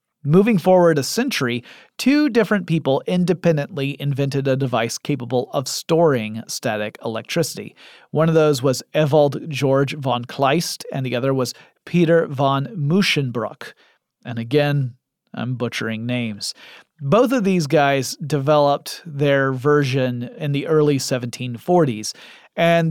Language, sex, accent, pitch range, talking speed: English, male, American, 135-165 Hz, 125 wpm